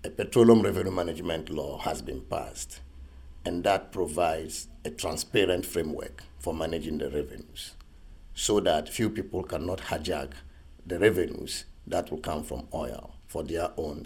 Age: 50-69